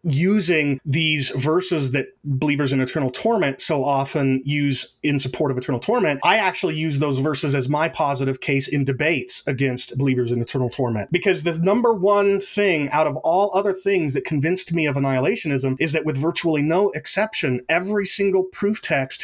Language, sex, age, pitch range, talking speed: English, male, 30-49, 135-175 Hz, 180 wpm